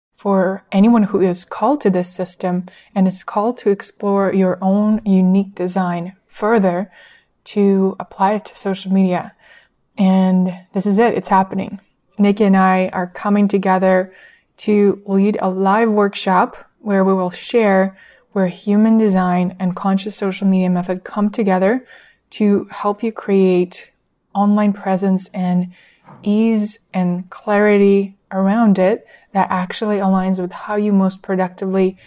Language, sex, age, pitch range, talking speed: English, female, 20-39, 185-205 Hz, 140 wpm